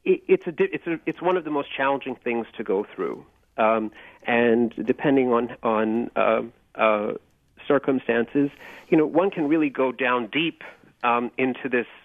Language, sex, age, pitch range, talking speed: English, male, 40-59, 120-155 Hz, 165 wpm